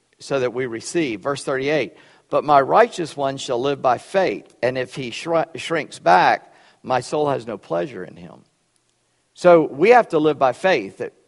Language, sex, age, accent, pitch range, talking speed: English, male, 50-69, American, 115-155 Hz, 180 wpm